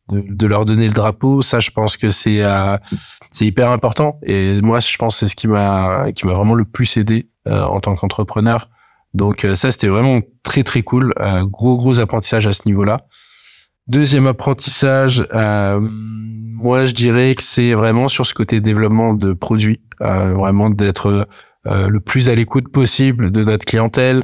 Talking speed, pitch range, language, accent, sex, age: 185 wpm, 100-120 Hz, French, French, male, 20-39